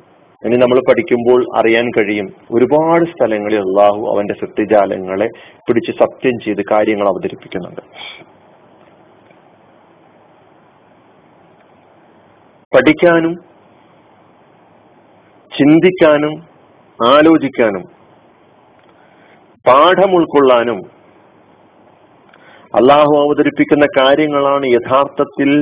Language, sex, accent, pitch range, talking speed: Malayalam, male, native, 110-155 Hz, 50 wpm